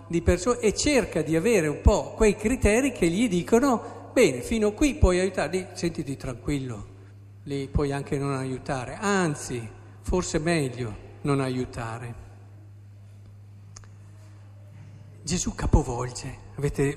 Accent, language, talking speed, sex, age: native, Italian, 125 wpm, male, 50-69